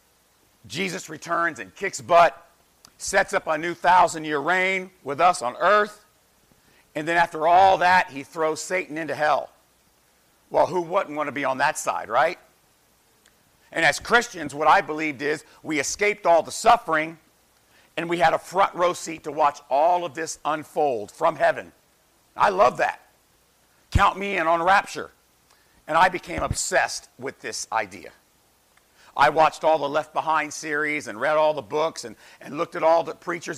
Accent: American